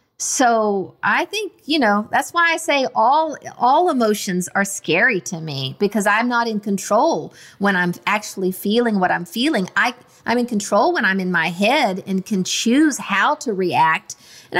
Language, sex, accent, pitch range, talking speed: English, female, American, 195-245 Hz, 180 wpm